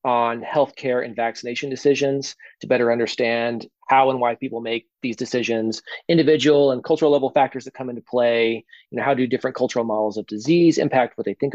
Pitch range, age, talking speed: 110-130 Hz, 30-49, 190 wpm